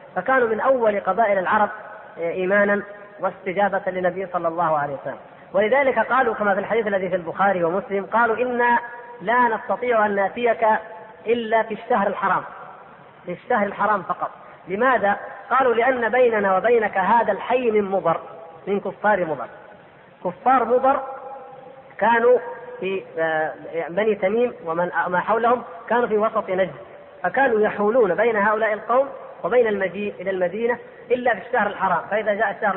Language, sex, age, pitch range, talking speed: Arabic, female, 30-49, 185-240 Hz, 135 wpm